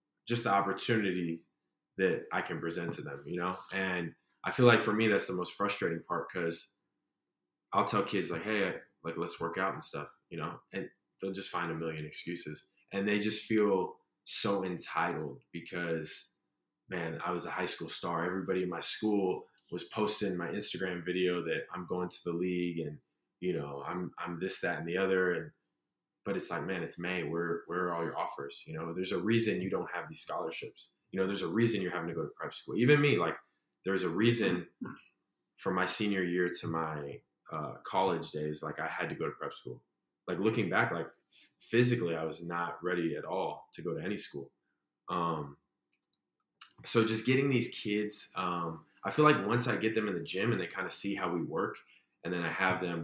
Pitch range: 80-105 Hz